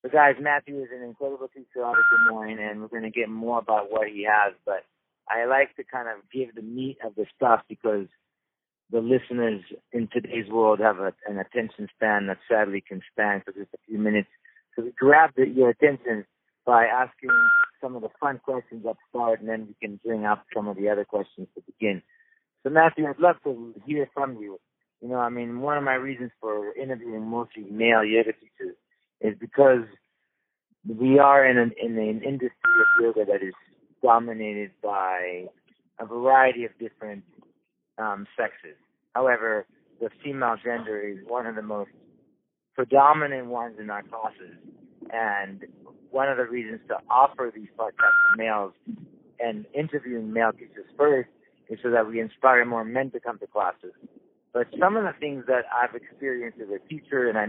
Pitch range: 110-135 Hz